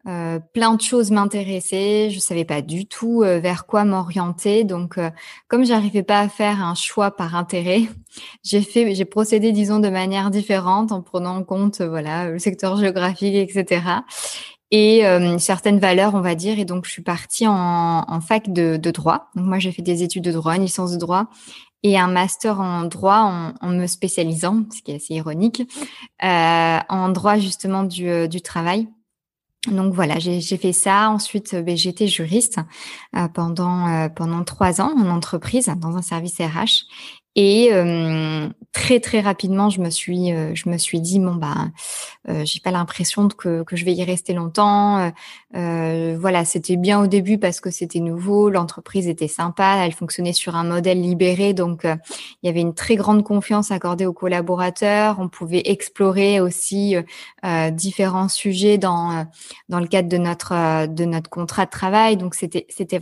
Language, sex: French, female